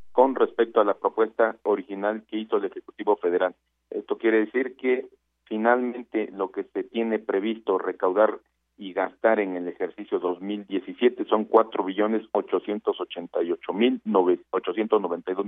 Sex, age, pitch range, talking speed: male, 50-69, 95-120 Hz, 120 wpm